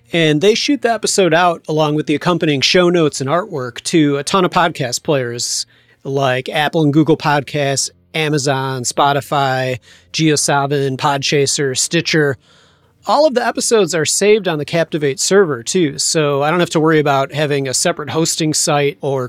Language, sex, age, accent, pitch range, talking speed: English, male, 40-59, American, 140-175 Hz, 170 wpm